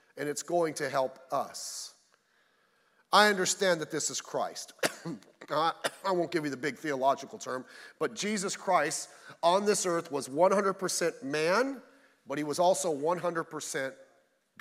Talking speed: 140 wpm